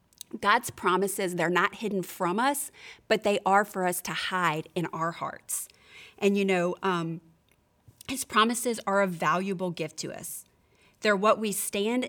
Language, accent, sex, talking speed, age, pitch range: English, American, female, 165 wpm, 30-49, 175-215 Hz